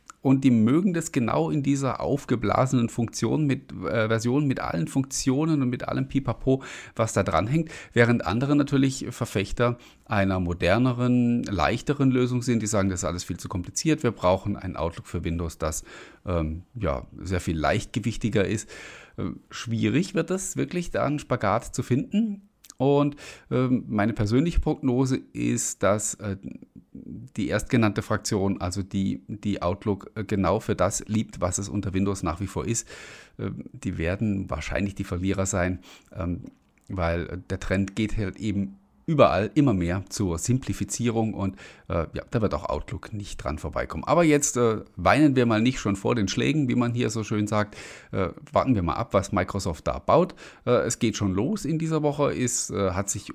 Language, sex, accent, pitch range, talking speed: German, male, German, 95-130 Hz, 170 wpm